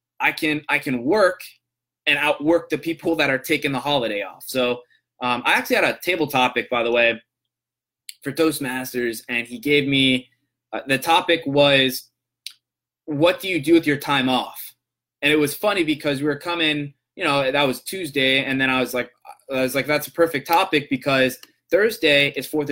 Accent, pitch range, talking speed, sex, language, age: American, 125-145 Hz, 195 wpm, male, English, 20-39